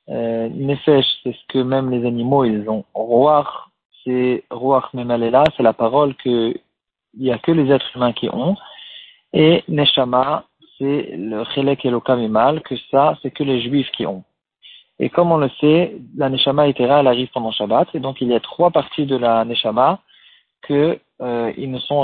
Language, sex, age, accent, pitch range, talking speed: French, male, 40-59, French, 125-150 Hz, 190 wpm